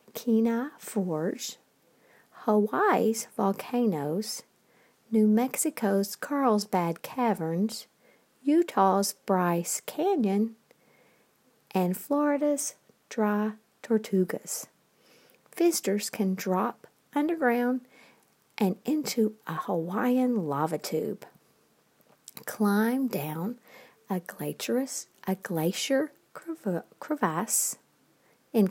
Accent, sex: American, female